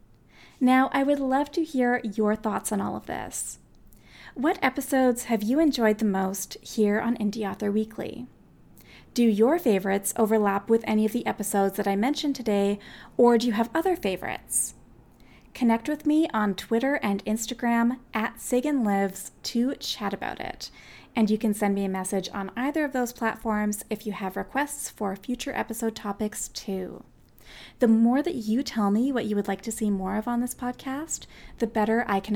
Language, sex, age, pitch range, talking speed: English, female, 30-49, 205-250 Hz, 180 wpm